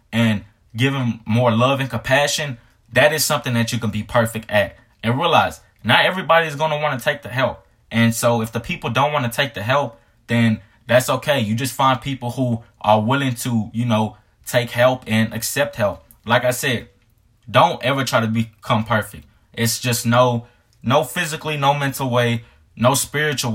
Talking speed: 195 wpm